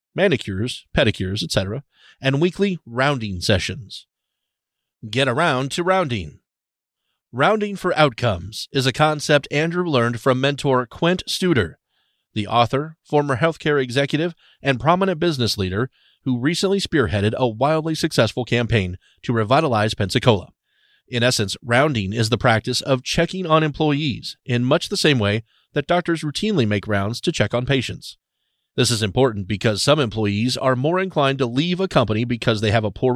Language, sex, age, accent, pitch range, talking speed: English, male, 40-59, American, 110-150 Hz, 150 wpm